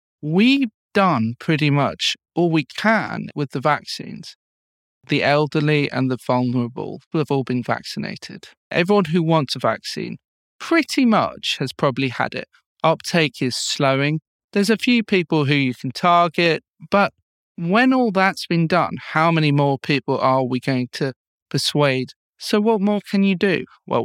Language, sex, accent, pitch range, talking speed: English, male, British, 130-180 Hz, 155 wpm